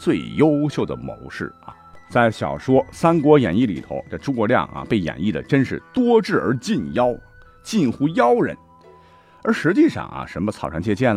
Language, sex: Chinese, male